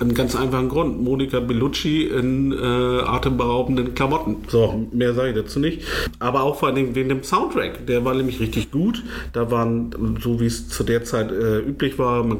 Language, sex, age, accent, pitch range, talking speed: German, male, 40-59, German, 105-125 Hz, 195 wpm